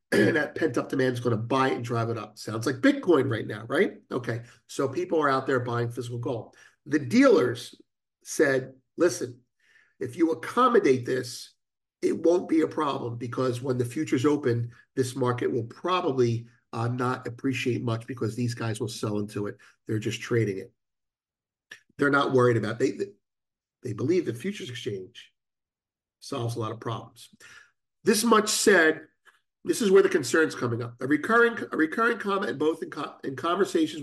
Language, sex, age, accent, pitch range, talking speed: English, male, 50-69, American, 120-155 Hz, 180 wpm